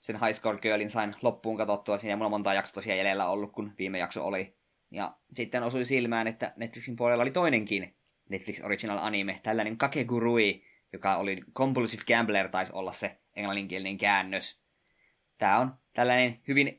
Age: 20-39